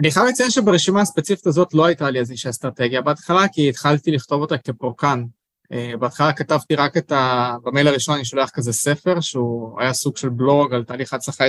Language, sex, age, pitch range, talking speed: Hebrew, male, 20-39, 130-165 Hz, 190 wpm